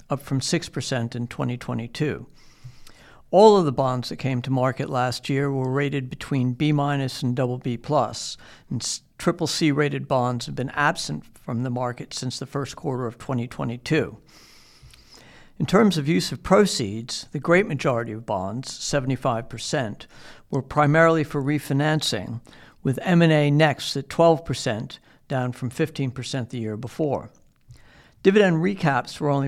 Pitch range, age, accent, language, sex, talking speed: 125-150 Hz, 60-79, American, English, male, 145 wpm